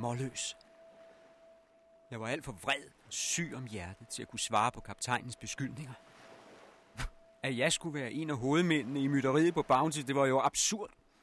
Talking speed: 170 wpm